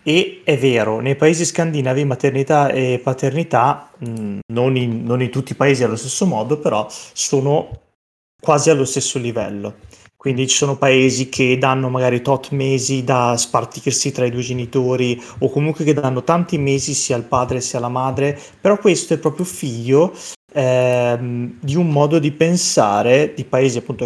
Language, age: Italian, 30-49